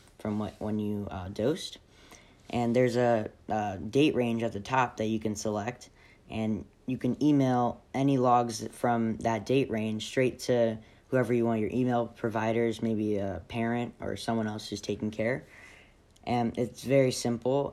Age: 10-29